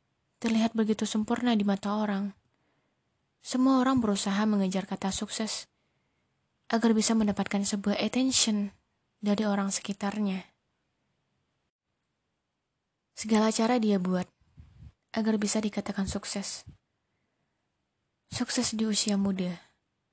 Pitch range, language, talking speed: 200-225 Hz, Indonesian, 95 wpm